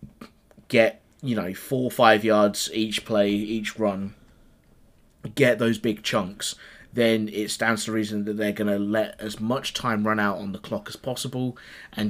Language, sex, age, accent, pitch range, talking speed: English, male, 20-39, British, 100-115 Hz, 180 wpm